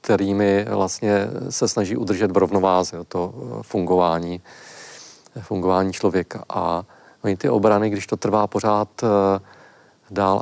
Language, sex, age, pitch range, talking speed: Czech, male, 40-59, 95-110 Hz, 115 wpm